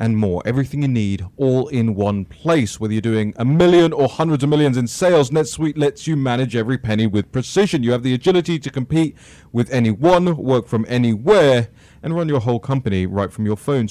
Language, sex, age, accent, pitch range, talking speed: English, male, 30-49, British, 120-150 Hz, 205 wpm